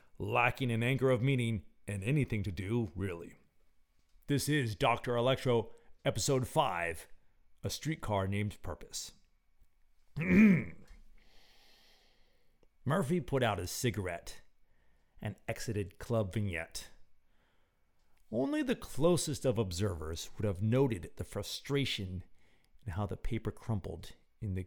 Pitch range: 95-135 Hz